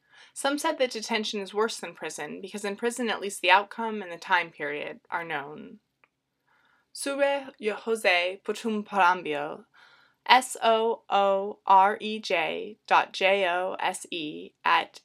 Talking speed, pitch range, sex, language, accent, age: 110 wpm, 185-230 Hz, female, English, American, 20-39